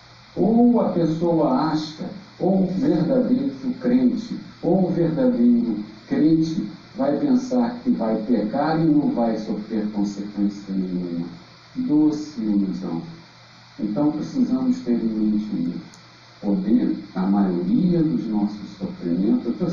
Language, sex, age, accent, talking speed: Portuguese, male, 50-69, Brazilian, 115 wpm